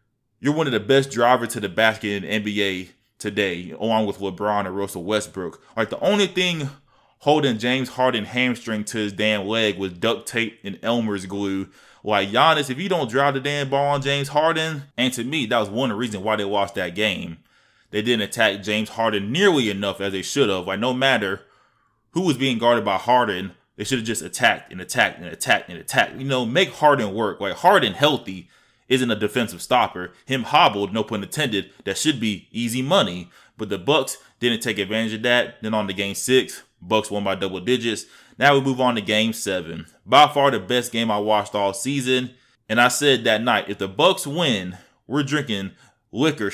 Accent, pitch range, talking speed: American, 105-130 Hz, 210 wpm